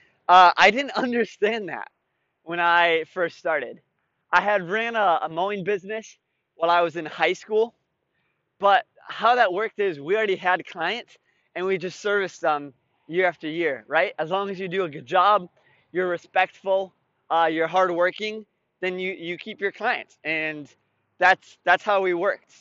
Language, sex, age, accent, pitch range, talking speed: English, male, 20-39, American, 165-205 Hz, 175 wpm